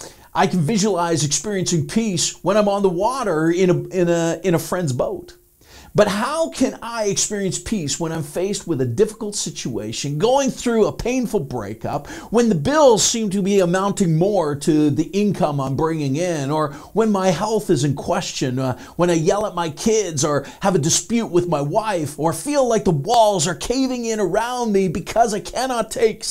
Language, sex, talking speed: English, male, 185 wpm